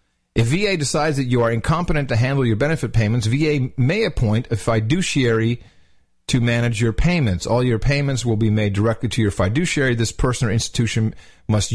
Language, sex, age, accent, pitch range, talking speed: English, male, 40-59, American, 105-150 Hz, 185 wpm